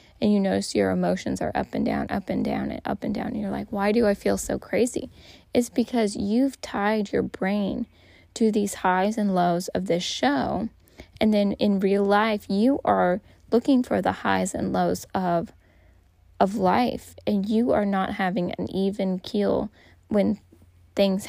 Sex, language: female, English